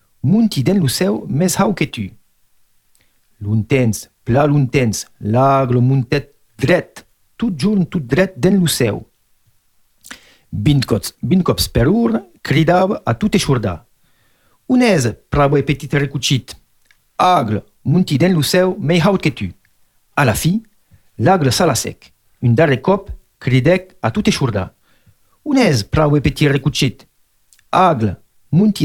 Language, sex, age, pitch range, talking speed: French, male, 50-69, 120-185 Hz, 105 wpm